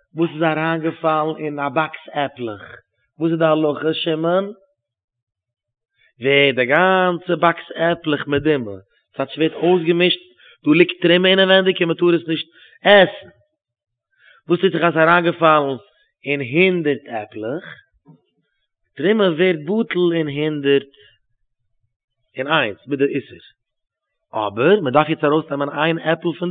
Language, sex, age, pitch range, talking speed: English, male, 30-49, 145-185 Hz, 155 wpm